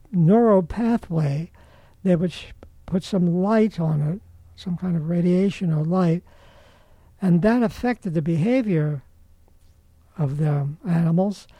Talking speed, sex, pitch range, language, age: 120 wpm, male, 150-200 Hz, English, 60-79